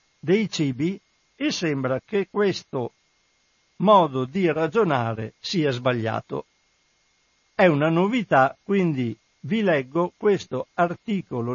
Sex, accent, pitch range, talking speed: male, native, 140-185 Hz, 100 wpm